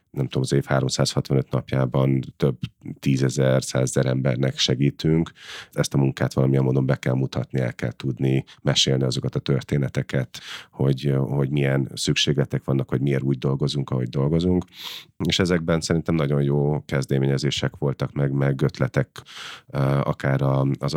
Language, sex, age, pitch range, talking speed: Hungarian, male, 30-49, 65-75 Hz, 145 wpm